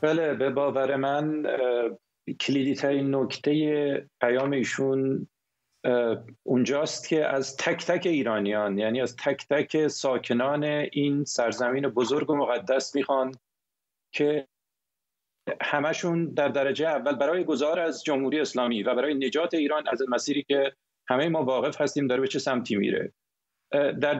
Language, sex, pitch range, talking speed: Persian, male, 135-155 Hz, 130 wpm